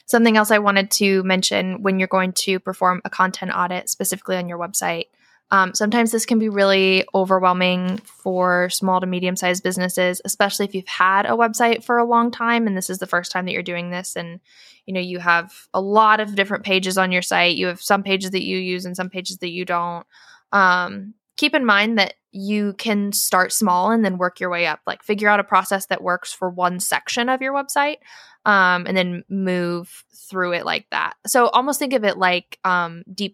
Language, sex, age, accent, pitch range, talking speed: English, female, 10-29, American, 180-205 Hz, 215 wpm